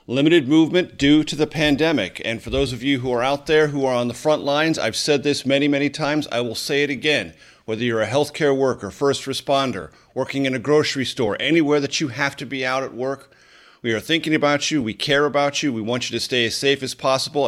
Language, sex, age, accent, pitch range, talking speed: English, male, 40-59, American, 120-145 Hz, 245 wpm